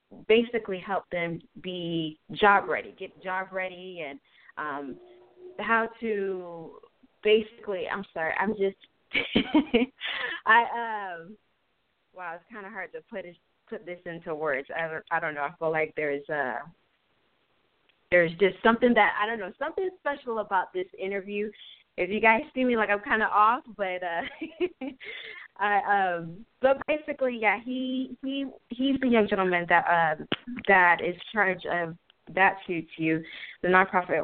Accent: American